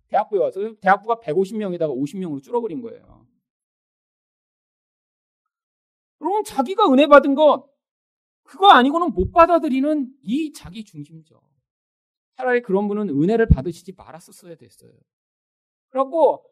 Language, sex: Korean, male